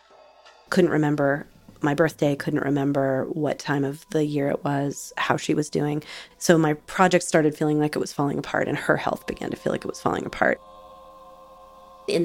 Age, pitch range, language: 30-49, 140-175 Hz, English